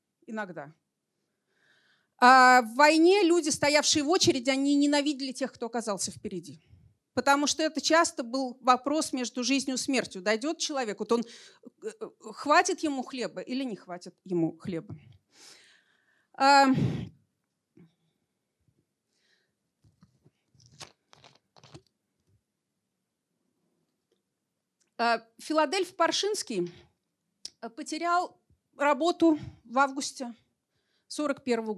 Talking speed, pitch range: 80 wpm, 210-295 Hz